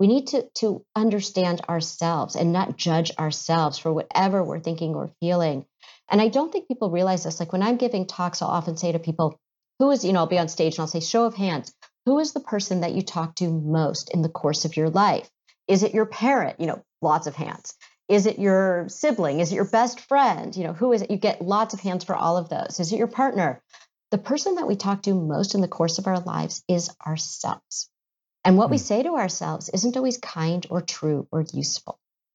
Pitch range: 170-225 Hz